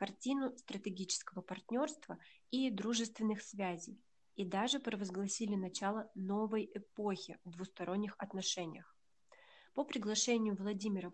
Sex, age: female, 20-39